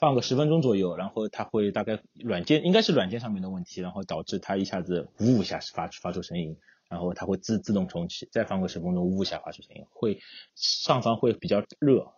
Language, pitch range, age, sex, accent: Chinese, 90-115 Hz, 30-49, male, native